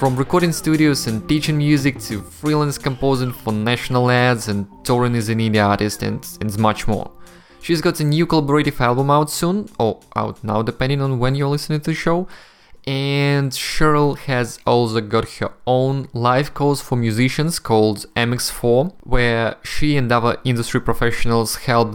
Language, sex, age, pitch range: English, male, 20-39, 110-135 Hz